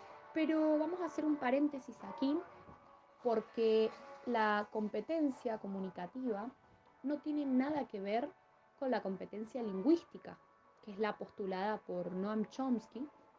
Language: French